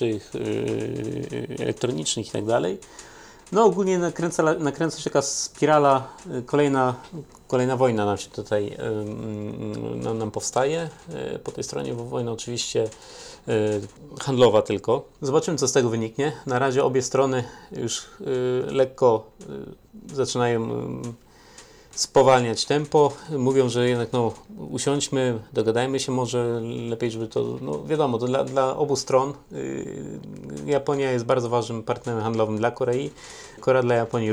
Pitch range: 115-140 Hz